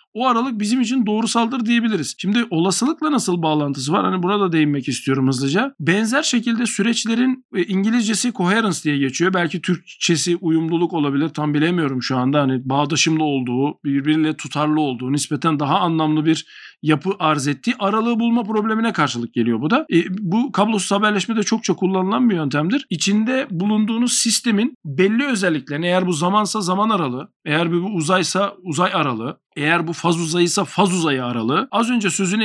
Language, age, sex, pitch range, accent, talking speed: Turkish, 50-69, male, 155-215 Hz, native, 155 wpm